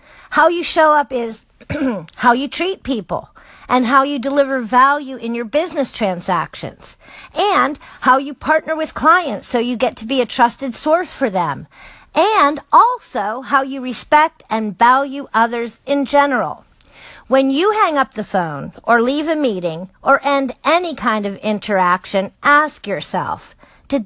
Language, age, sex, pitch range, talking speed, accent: English, 50-69, female, 235-310 Hz, 155 wpm, American